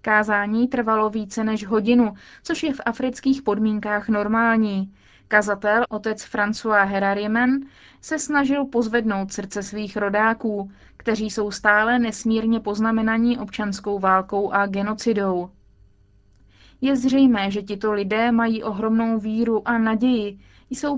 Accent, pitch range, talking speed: native, 200-230 Hz, 115 wpm